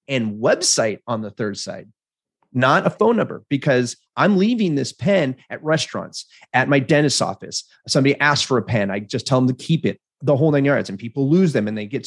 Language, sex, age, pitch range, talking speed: English, male, 30-49, 120-185 Hz, 220 wpm